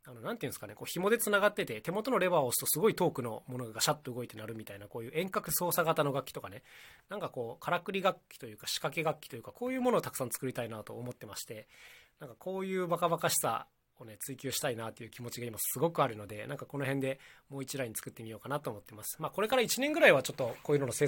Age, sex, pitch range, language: 20-39, male, 120-155 Hz, Japanese